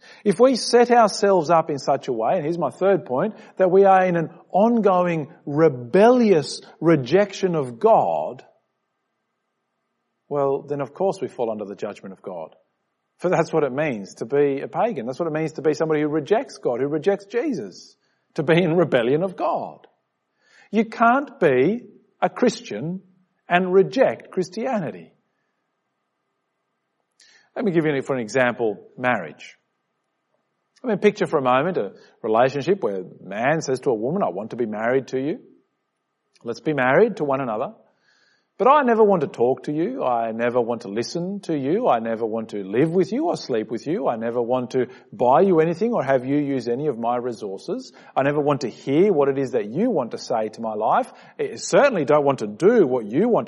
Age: 50-69